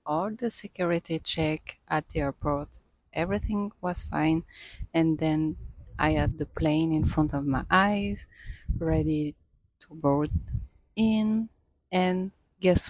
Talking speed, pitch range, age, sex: 125 wpm, 155-180 Hz, 20-39, female